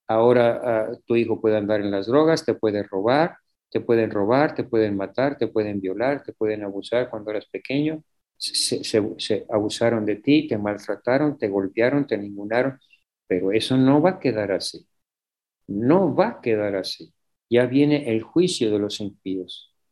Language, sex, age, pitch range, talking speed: Spanish, male, 50-69, 110-140 Hz, 175 wpm